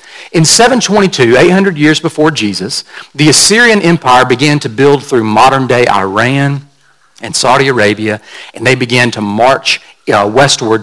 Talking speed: 140 wpm